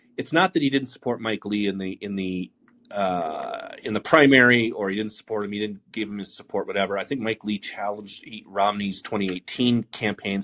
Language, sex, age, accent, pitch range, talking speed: English, male, 30-49, American, 100-135 Hz, 215 wpm